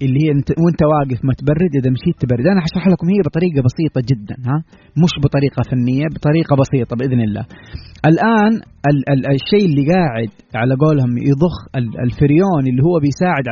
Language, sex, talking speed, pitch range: Arabic, male, 170 wpm, 135-195 Hz